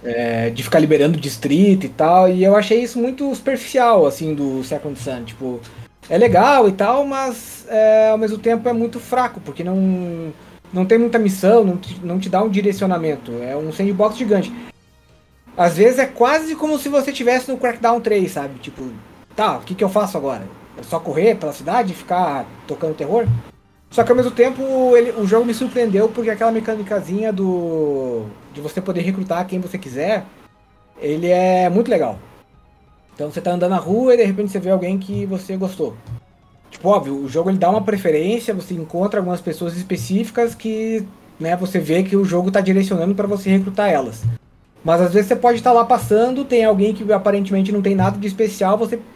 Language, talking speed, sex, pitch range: Portuguese, 195 wpm, male, 170-225 Hz